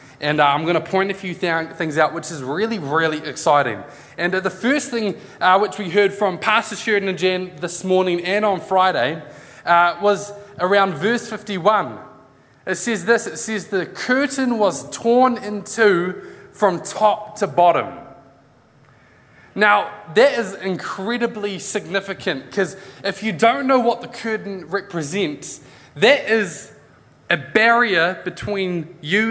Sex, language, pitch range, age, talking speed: male, English, 155-210 Hz, 20-39, 150 wpm